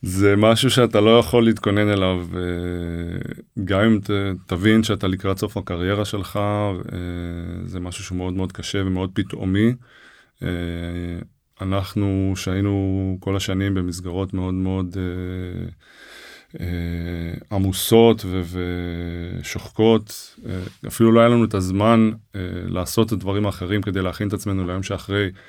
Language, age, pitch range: Hebrew, 20-39, 95-110 Hz